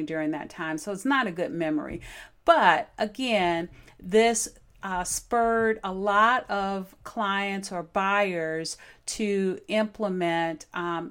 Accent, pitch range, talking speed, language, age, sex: American, 175-220 Hz, 125 wpm, English, 40-59, female